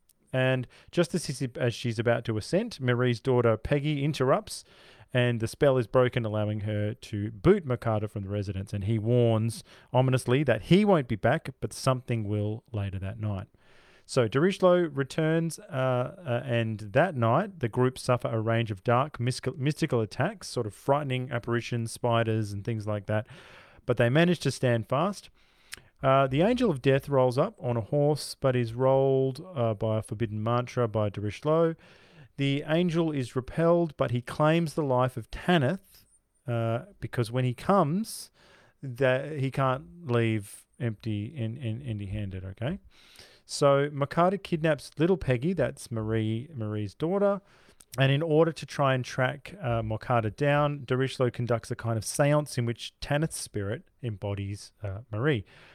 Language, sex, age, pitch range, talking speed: English, male, 30-49, 115-145 Hz, 165 wpm